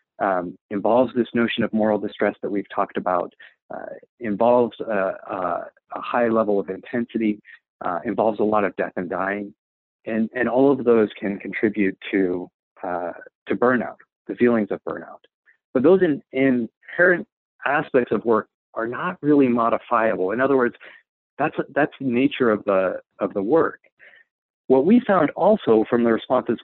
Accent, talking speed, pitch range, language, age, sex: American, 165 wpm, 110-135 Hz, English, 50-69, male